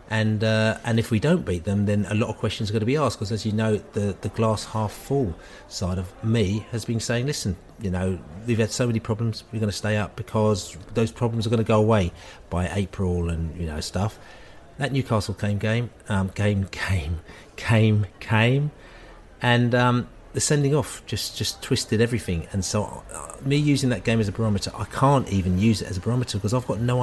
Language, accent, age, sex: English, British, 40-59, male